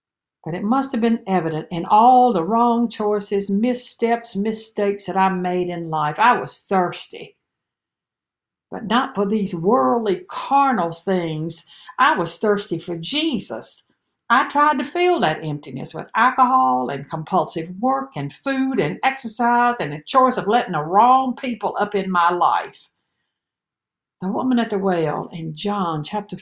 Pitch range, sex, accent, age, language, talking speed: 175-240 Hz, female, American, 60-79, English, 155 wpm